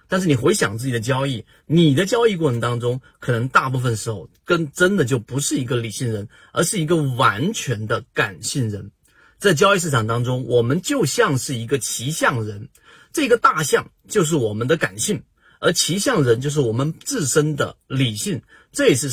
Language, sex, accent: Chinese, male, native